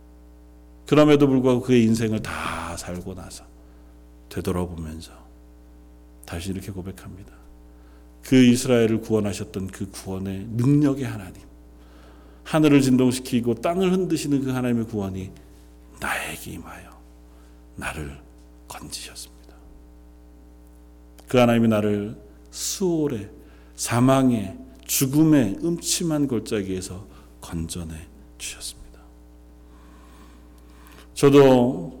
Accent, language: native, Korean